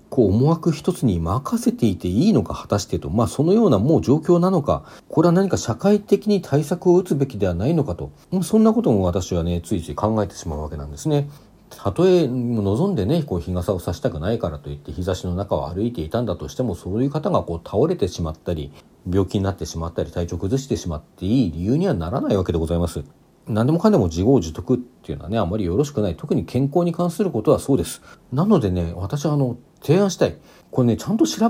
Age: 40-59